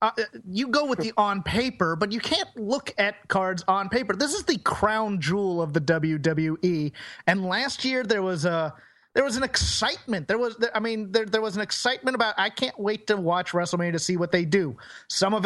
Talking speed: 215 wpm